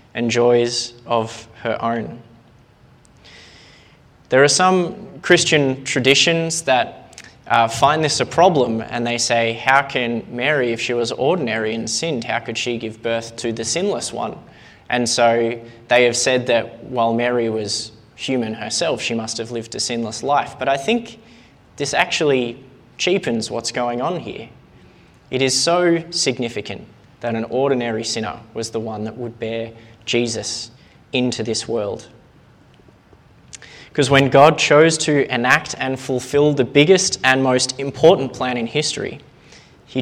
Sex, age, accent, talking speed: male, 20-39, Australian, 150 wpm